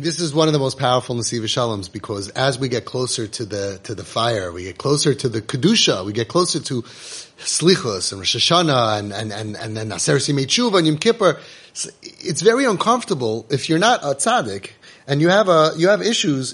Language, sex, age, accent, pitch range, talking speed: English, male, 30-49, American, 135-185 Hz, 205 wpm